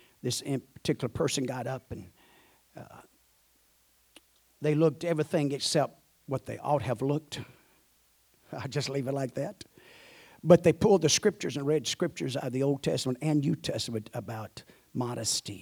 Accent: American